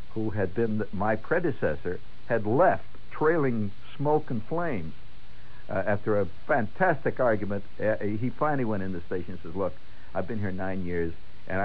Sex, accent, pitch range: male, American, 95-120 Hz